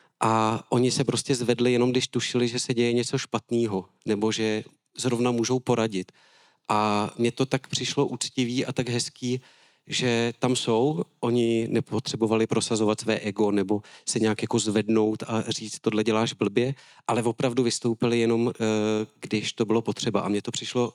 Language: Czech